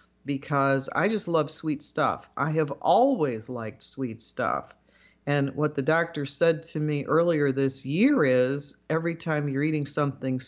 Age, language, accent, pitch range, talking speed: 50-69, English, American, 140-175 Hz, 160 wpm